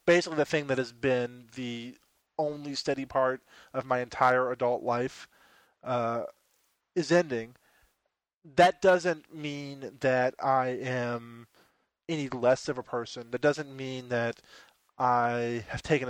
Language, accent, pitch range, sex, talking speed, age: English, American, 125-155 Hz, male, 135 wpm, 20-39